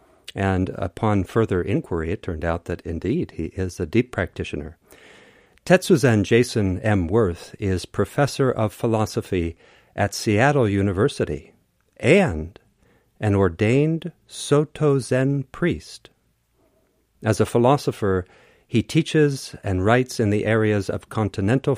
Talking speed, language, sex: 120 wpm, English, male